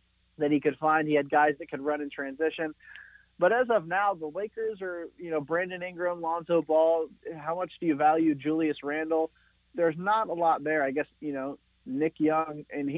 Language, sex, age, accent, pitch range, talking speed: English, male, 30-49, American, 150-180 Hz, 205 wpm